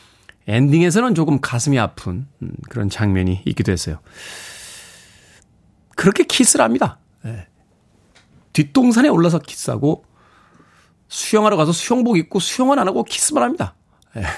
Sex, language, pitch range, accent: male, Korean, 110-160 Hz, native